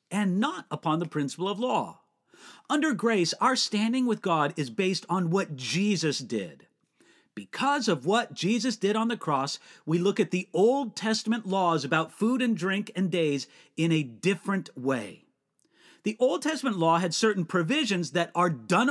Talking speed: 170 wpm